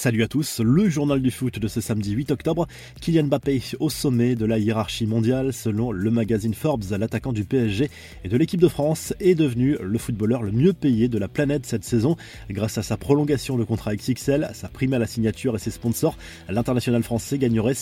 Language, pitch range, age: French, 110-145 Hz, 20-39